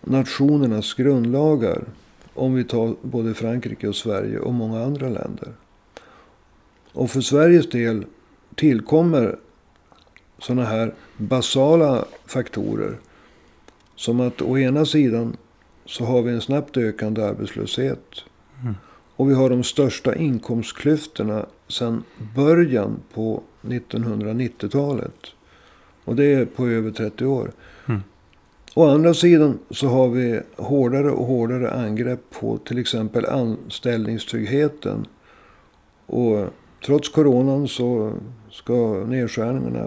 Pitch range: 115-140 Hz